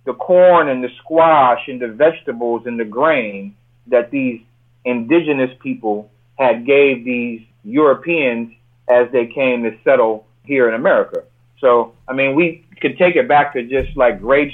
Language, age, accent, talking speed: English, 40-59, American, 160 wpm